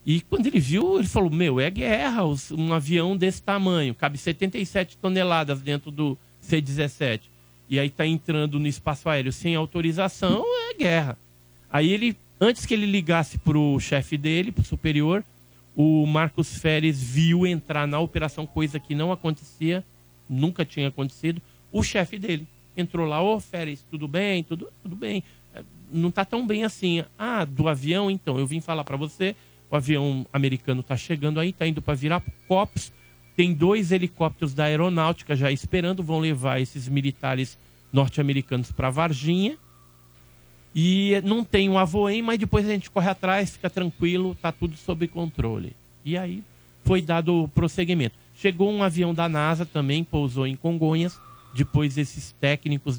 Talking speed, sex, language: 160 wpm, male, Portuguese